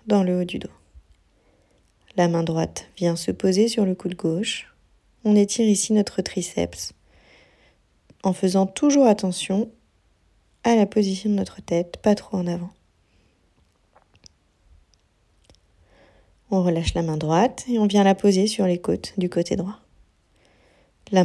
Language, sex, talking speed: French, female, 145 wpm